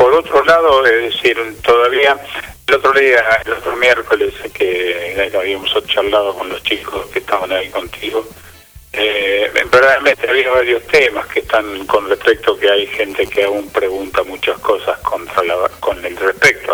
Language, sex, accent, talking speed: Spanish, male, Argentinian, 165 wpm